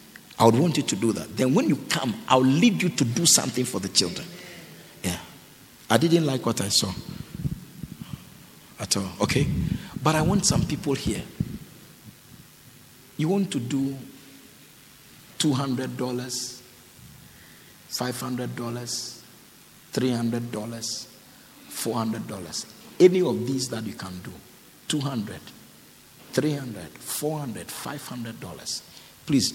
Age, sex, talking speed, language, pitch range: 50-69, male, 115 wpm, English, 105-140 Hz